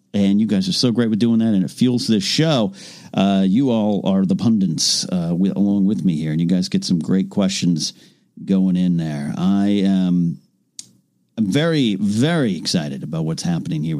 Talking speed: 195 wpm